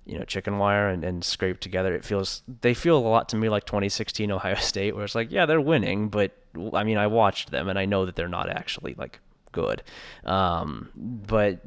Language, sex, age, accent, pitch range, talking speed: English, male, 20-39, American, 90-105 Hz, 220 wpm